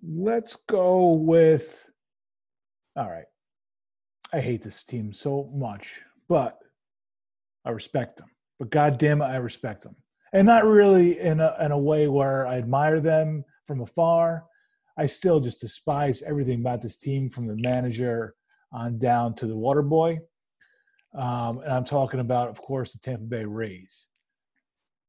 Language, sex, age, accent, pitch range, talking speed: English, male, 30-49, American, 125-160 Hz, 150 wpm